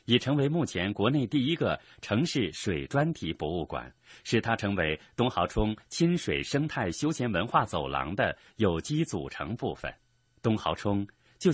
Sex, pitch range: male, 95-135 Hz